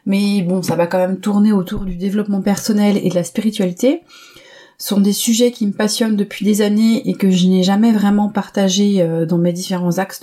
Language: French